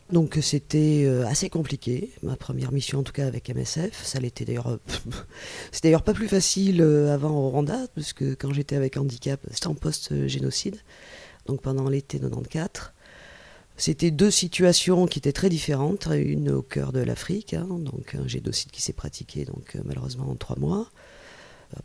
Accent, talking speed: French, 170 wpm